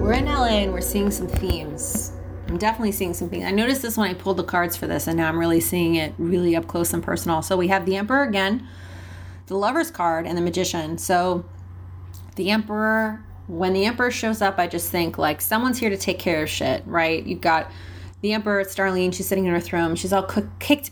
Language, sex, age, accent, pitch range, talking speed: English, female, 30-49, American, 160-205 Hz, 225 wpm